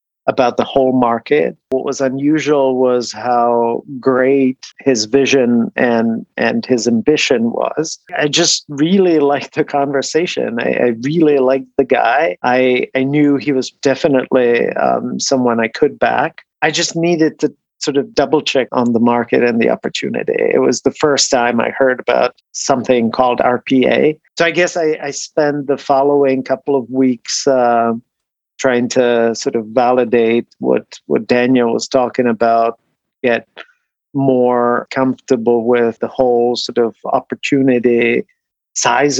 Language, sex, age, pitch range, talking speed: English, male, 40-59, 120-140 Hz, 150 wpm